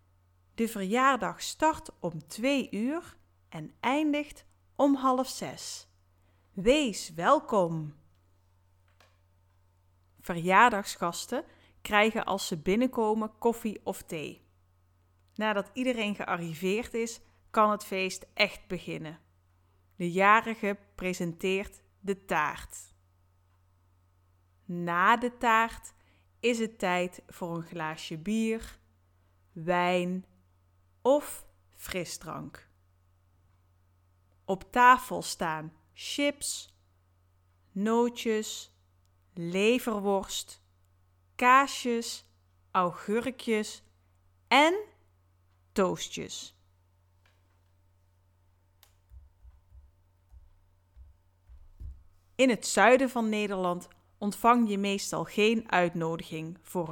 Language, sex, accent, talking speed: Dutch, female, Dutch, 75 wpm